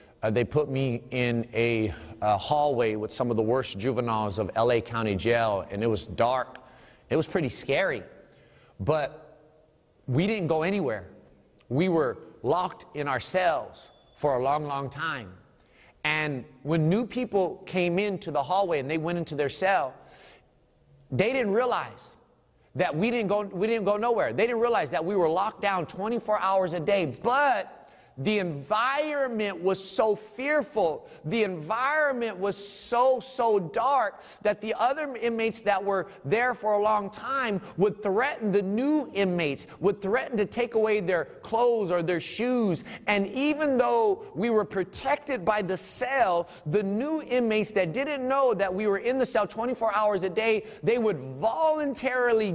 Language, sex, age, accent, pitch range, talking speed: English, male, 30-49, American, 155-225 Hz, 165 wpm